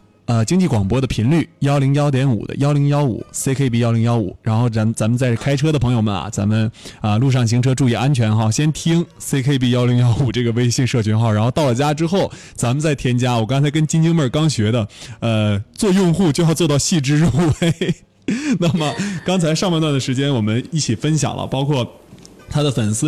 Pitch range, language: 115-150 Hz, Chinese